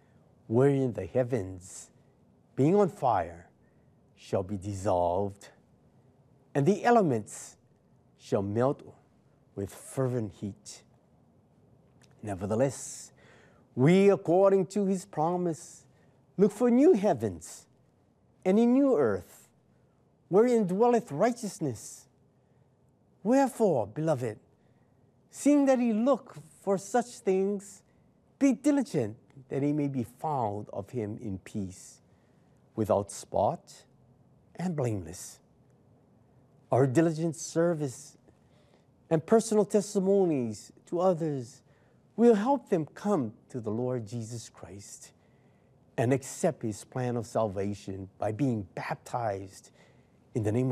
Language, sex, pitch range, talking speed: English, male, 115-190 Hz, 105 wpm